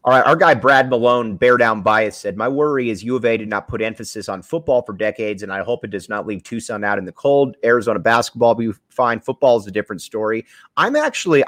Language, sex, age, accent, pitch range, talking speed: English, male, 30-49, American, 100-135 Hz, 250 wpm